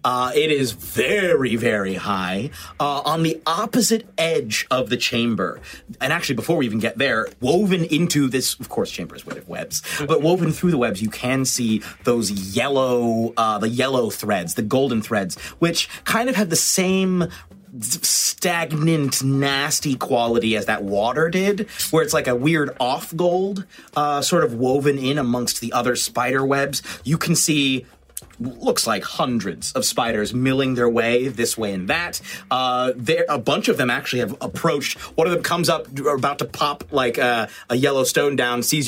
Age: 30-49